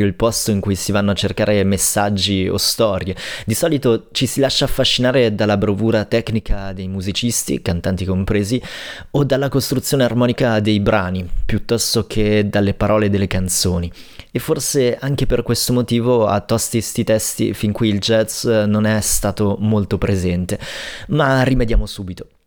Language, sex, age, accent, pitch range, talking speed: Italian, male, 20-39, native, 100-120 Hz, 155 wpm